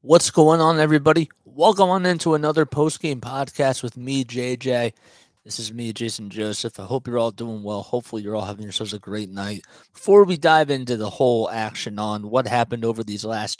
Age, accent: 30-49, American